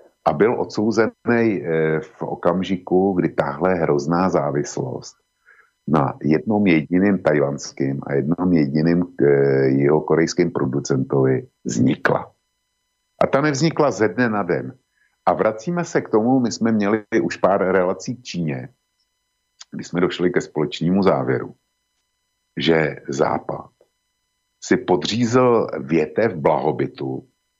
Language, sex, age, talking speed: Slovak, male, 50-69, 115 wpm